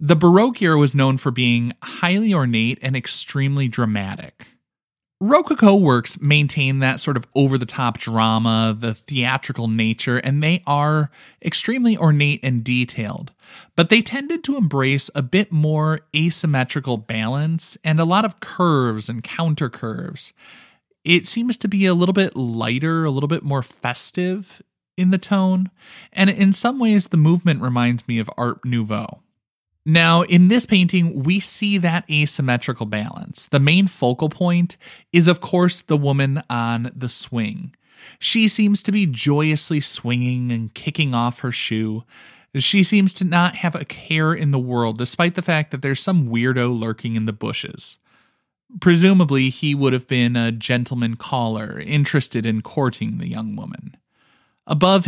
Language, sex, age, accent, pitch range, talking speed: English, male, 20-39, American, 120-180 Hz, 155 wpm